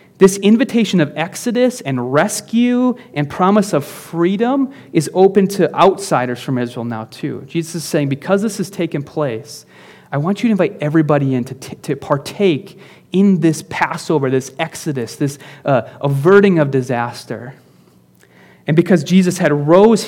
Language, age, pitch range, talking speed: English, 30-49, 140-195 Hz, 150 wpm